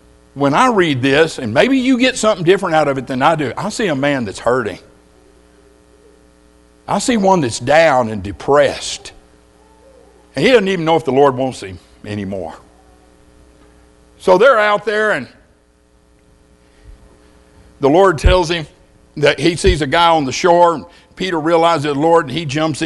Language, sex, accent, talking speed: English, male, American, 170 wpm